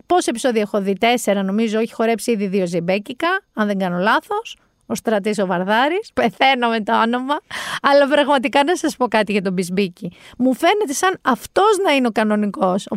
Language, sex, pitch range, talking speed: Greek, female, 215-330 Hz, 190 wpm